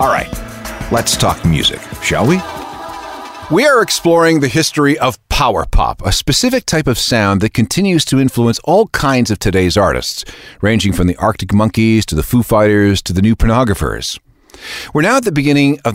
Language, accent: English, American